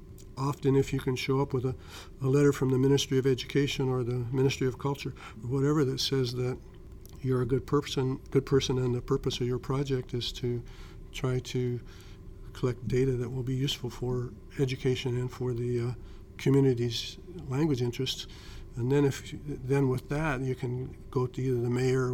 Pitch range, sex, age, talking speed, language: 125-135 Hz, male, 50-69, 190 wpm, English